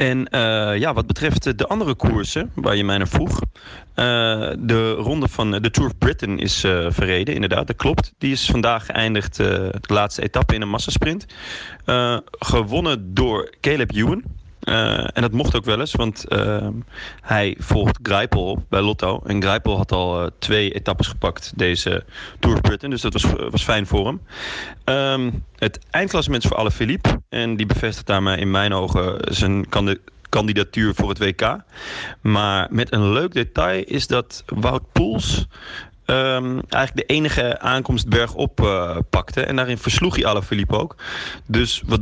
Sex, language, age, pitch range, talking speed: male, Dutch, 30-49, 100-115 Hz, 165 wpm